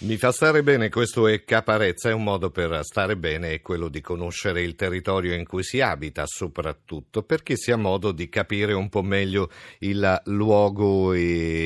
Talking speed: 180 wpm